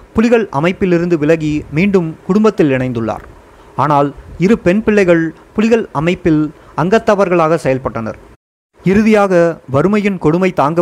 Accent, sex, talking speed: native, male, 100 wpm